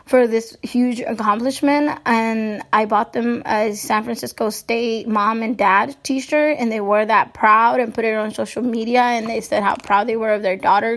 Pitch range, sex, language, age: 230-260 Hz, female, English, 10-29